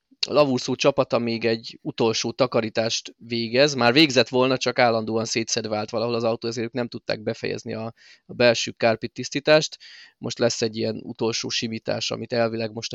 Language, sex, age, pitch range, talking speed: Hungarian, male, 20-39, 115-145 Hz, 165 wpm